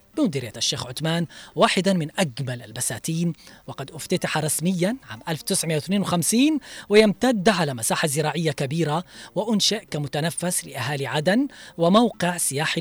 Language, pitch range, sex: Arabic, 145-190 Hz, female